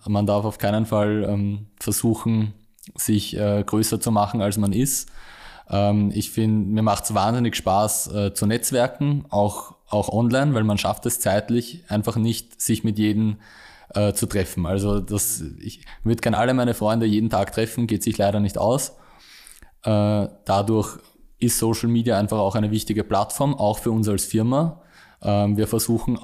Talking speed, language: 160 wpm, German